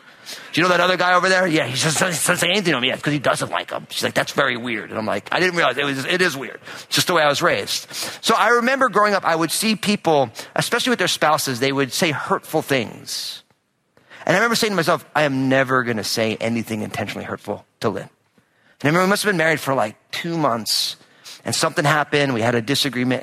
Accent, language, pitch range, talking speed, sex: American, English, 120-155 Hz, 260 wpm, male